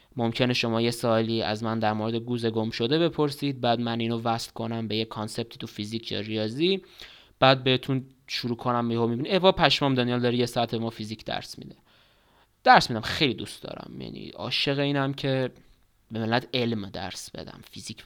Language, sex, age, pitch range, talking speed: Persian, male, 20-39, 115-135 Hz, 185 wpm